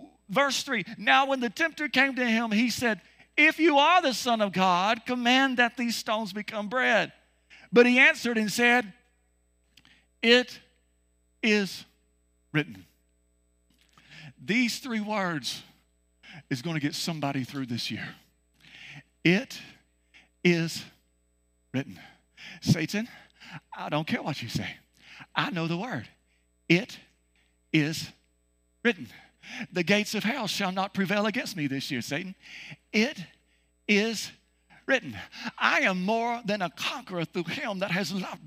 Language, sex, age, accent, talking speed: English, male, 50-69, American, 135 wpm